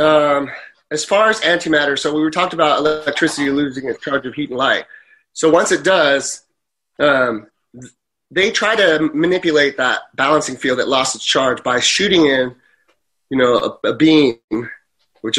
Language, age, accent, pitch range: English, 30-49, American, 140-175 Hz